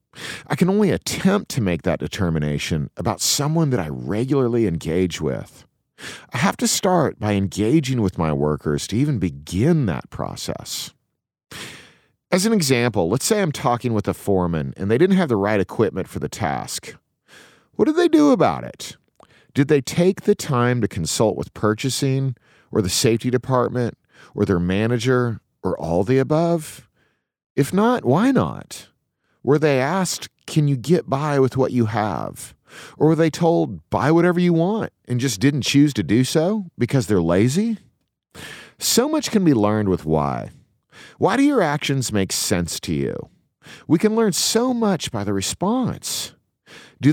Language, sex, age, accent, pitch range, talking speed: English, male, 40-59, American, 105-170 Hz, 170 wpm